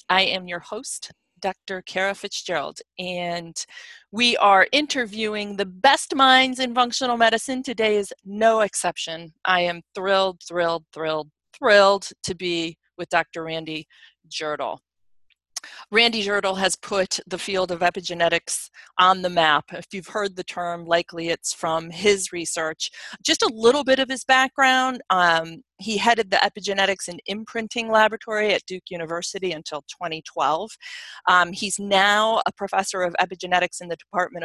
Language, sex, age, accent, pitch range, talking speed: English, female, 40-59, American, 170-215 Hz, 145 wpm